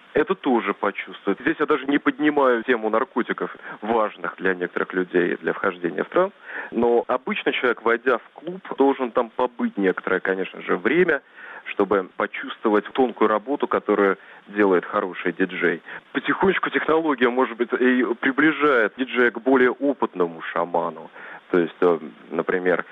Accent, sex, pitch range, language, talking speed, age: native, male, 100-130 Hz, Russian, 140 wpm, 20-39